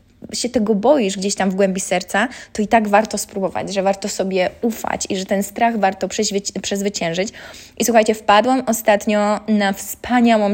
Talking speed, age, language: 165 wpm, 20-39, Polish